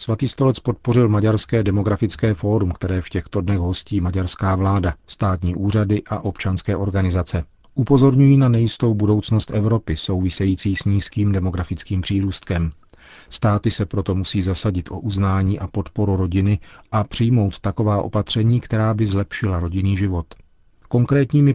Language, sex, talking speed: Czech, male, 135 wpm